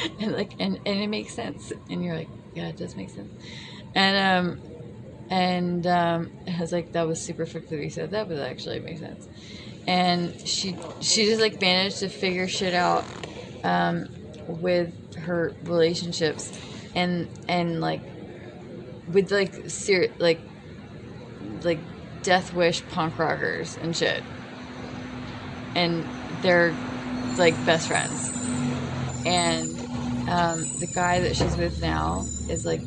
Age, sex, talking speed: 20-39, female, 140 wpm